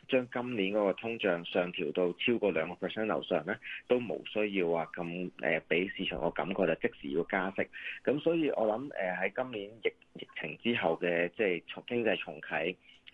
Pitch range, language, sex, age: 85-110 Hz, Chinese, male, 20-39